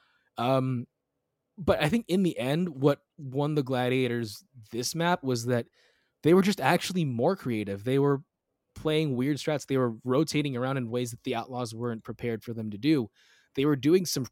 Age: 20-39